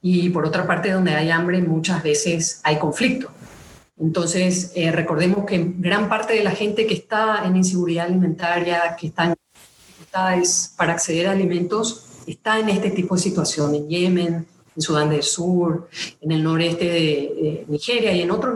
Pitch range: 165-210 Hz